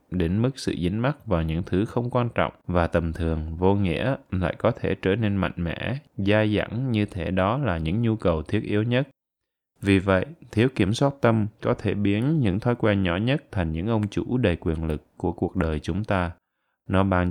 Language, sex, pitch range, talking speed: Vietnamese, male, 90-115 Hz, 220 wpm